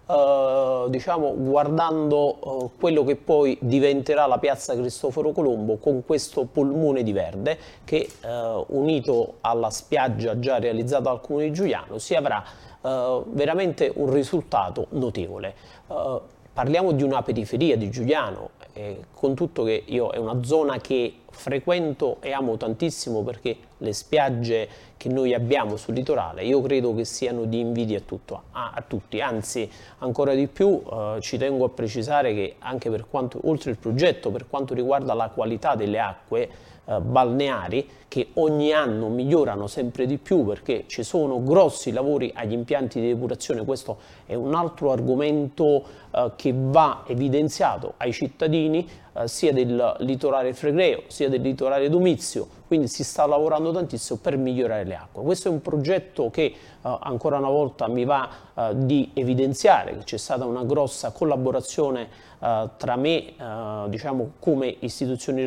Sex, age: male, 30-49